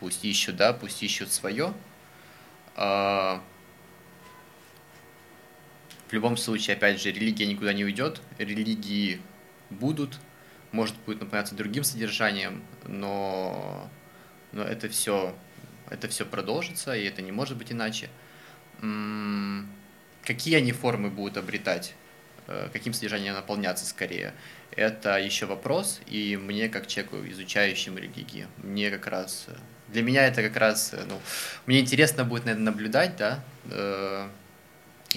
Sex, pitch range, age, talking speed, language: male, 100-120 Hz, 20-39, 120 wpm, Russian